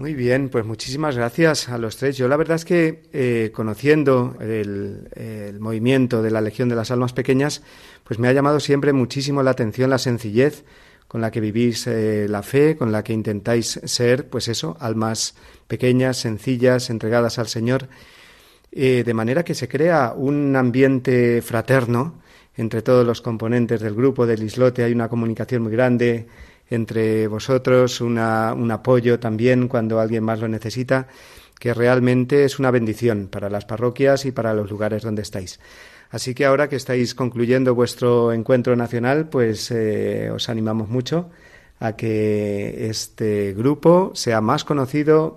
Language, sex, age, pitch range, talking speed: Spanish, male, 40-59, 110-130 Hz, 165 wpm